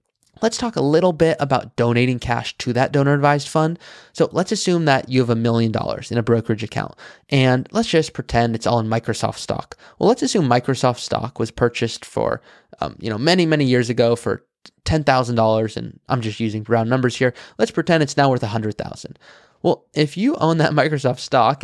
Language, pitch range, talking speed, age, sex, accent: English, 115-145 Hz, 210 wpm, 20-39, male, American